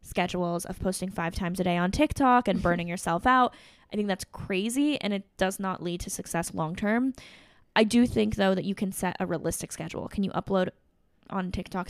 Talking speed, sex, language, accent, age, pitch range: 210 wpm, female, English, American, 10-29, 185-225 Hz